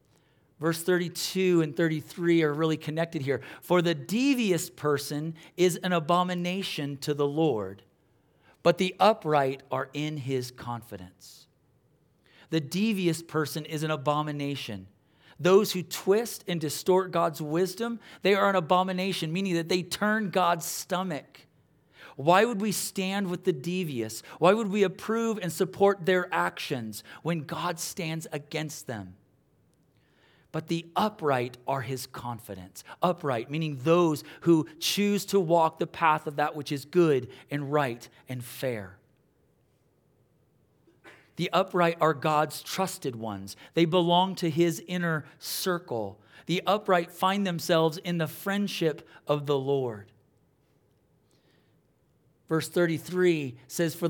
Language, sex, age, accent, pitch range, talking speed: English, male, 40-59, American, 145-180 Hz, 130 wpm